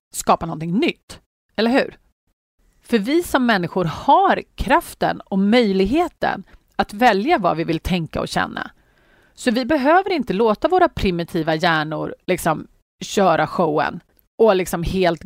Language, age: Swedish, 30-49